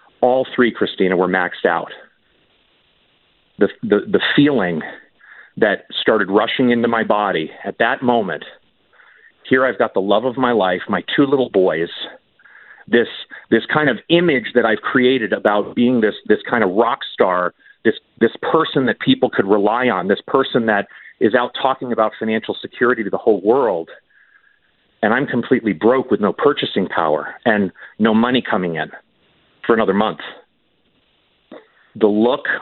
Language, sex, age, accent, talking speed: English, male, 40-59, American, 160 wpm